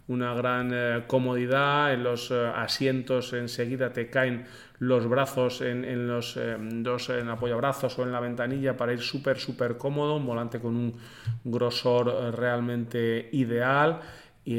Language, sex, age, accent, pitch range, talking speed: Spanish, male, 30-49, Spanish, 110-125 Hz, 160 wpm